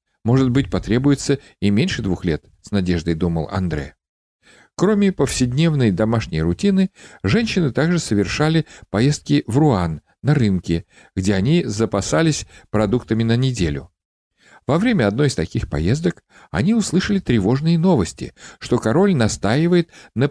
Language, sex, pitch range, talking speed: Russian, male, 95-150 Hz, 125 wpm